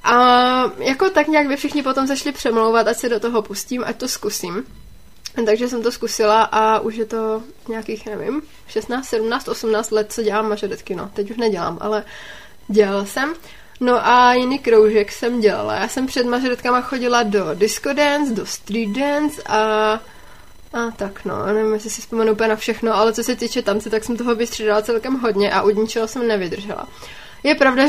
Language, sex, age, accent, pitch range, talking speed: Czech, female, 20-39, native, 215-255 Hz, 185 wpm